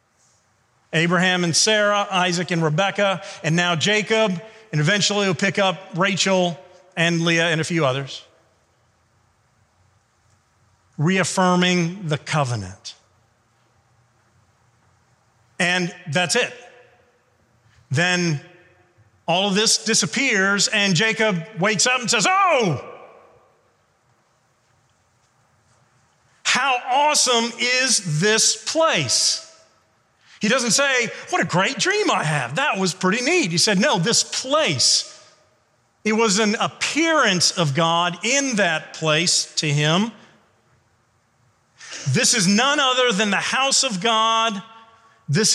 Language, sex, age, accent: English, male, 40-59, American